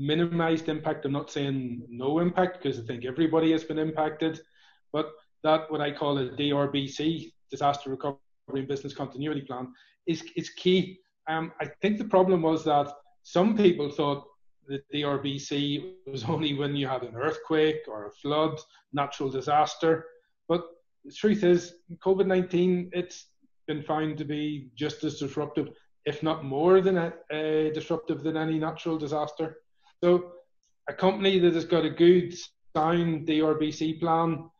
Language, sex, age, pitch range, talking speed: English, male, 30-49, 145-165 Hz, 155 wpm